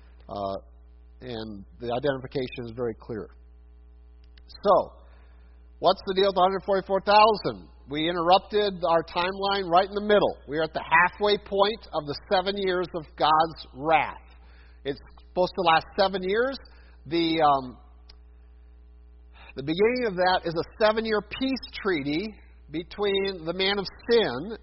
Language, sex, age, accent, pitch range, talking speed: English, male, 50-69, American, 135-195 Hz, 135 wpm